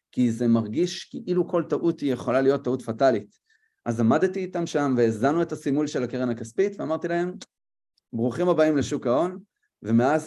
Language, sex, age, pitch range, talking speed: Hebrew, male, 30-49, 115-165 Hz, 165 wpm